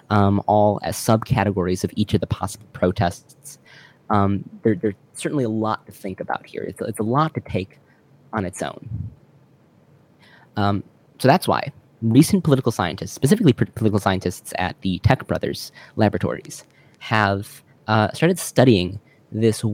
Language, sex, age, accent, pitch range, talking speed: English, male, 20-39, American, 100-130 Hz, 150 wpm